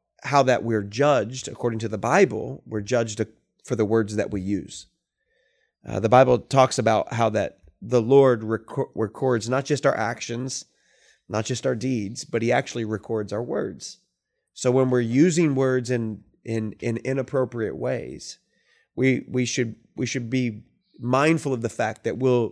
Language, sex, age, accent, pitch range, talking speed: English, male, 30-49, American, 110-135 Hz, 170 wpm